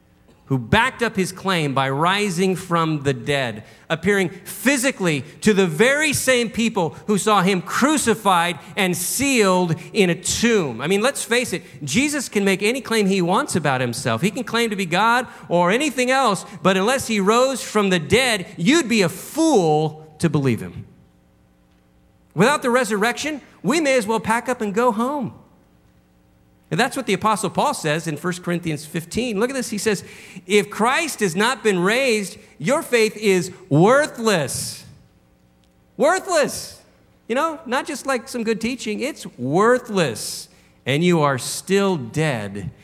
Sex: male